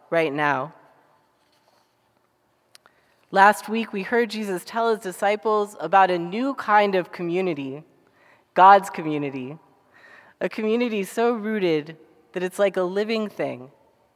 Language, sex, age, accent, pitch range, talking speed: English, female, 30-49, American, 160-215 Hz, 120 wpm